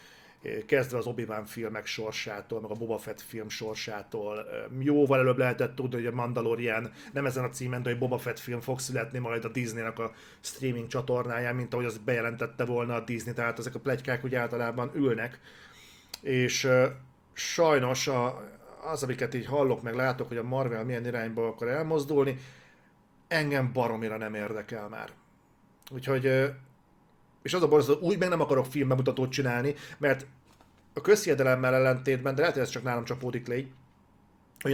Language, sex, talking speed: Hungarian, male, 165 wpm